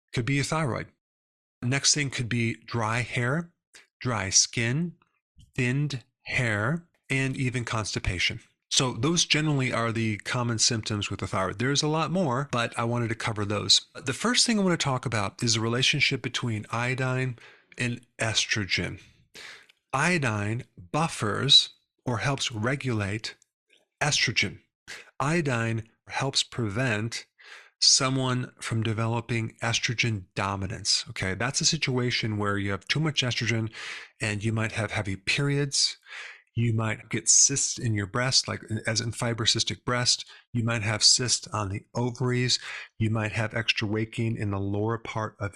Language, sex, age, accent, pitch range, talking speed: English, male, 40-59, American, 110-130 Hz, 145 wpm